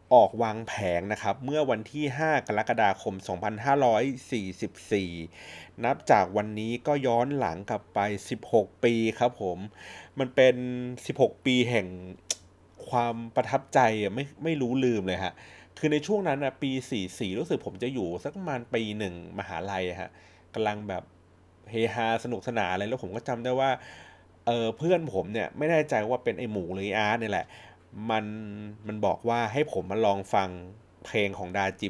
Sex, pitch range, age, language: male, 100-135 Hz, 30-49, Thai